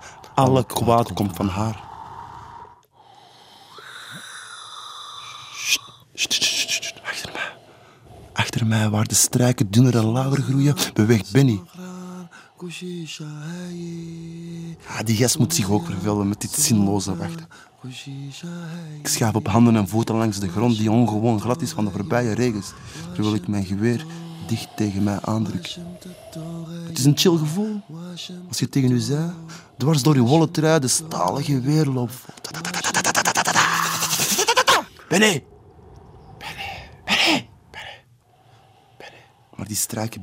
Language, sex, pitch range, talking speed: Dutch, male, 110-165 Hz, 115 wpm